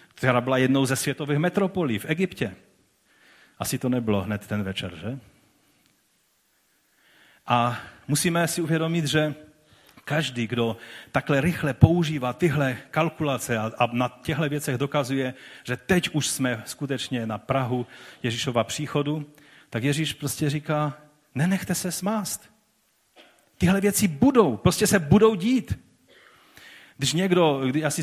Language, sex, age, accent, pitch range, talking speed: Czech, male, 40-59, native, 125-155 Hz, 125 wpm